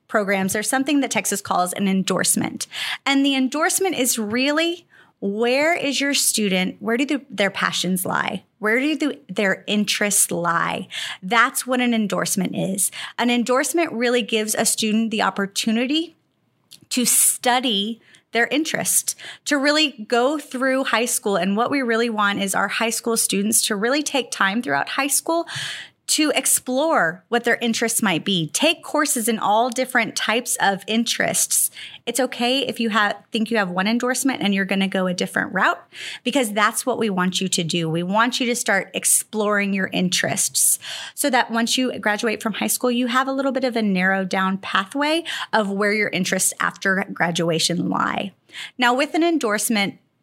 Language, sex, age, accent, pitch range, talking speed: English, female, 30-49, American, 195-260 Hz, 175 wpm